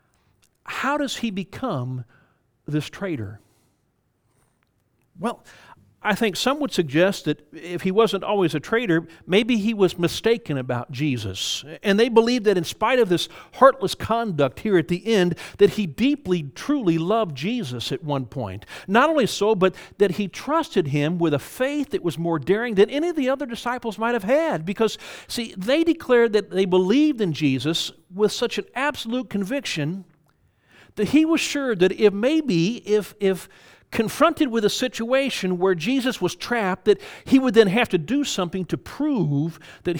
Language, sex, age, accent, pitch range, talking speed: English, male, 50-69, American, 145-225 Hz, 170 wpm